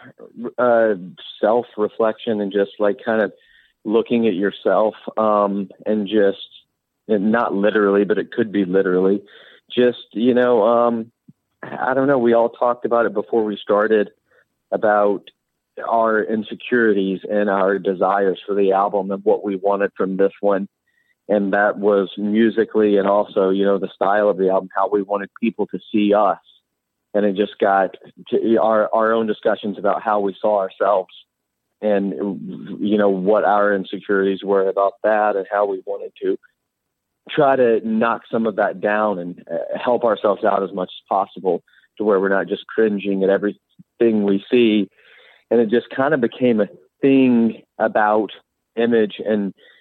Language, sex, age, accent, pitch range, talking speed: English, male, 30-49, American, 100-110 Hz, 165 wpm